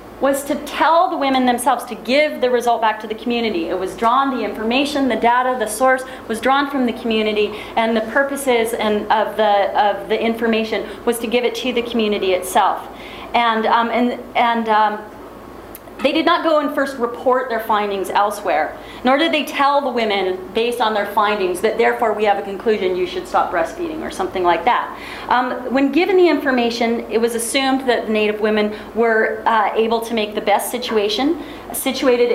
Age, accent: 30-49, American